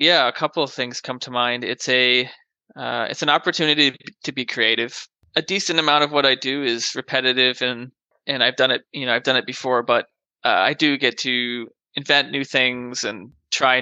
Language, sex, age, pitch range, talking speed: English, male, 20-39, 125-145 Hz, 210 wpm